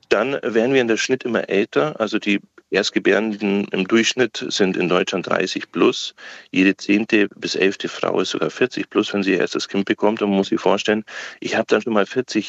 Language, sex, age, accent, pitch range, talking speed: German, male, 40-59, German, 95-115 Hz, 210 wpm